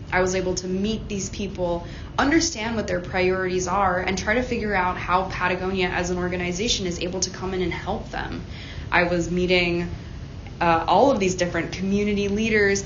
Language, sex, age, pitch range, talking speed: English, female, 20-39, 170-195 Hz, 185 wpm